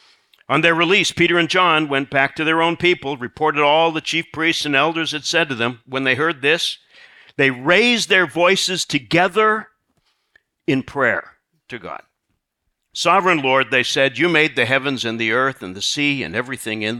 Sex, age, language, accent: male, 50-69, English, American